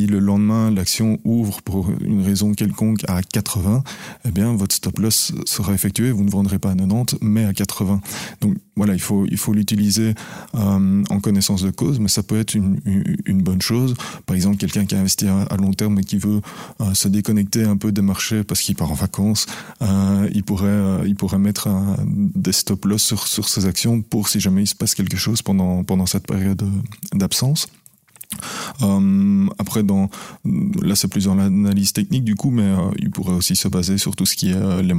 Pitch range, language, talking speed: 95-105 Hz, French, 210 wpm